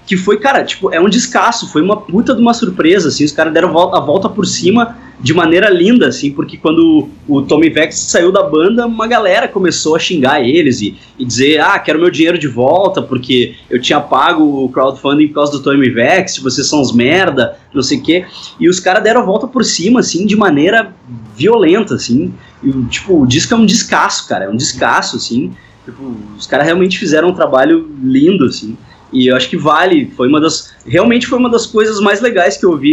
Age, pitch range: 20-39, 135-215 Hz